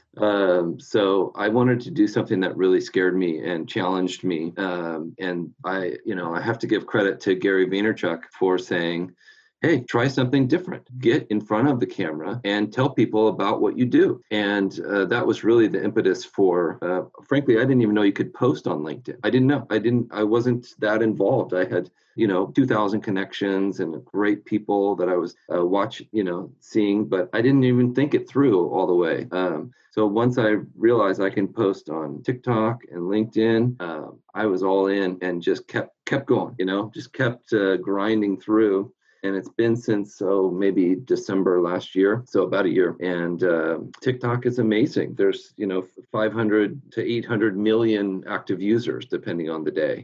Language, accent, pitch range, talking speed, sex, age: English, American, 95-120 Hz, 195 wpm, male, 40-59